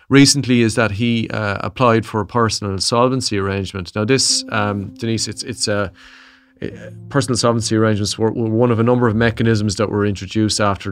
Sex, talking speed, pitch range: male, 185 wpm, 100-115 Hz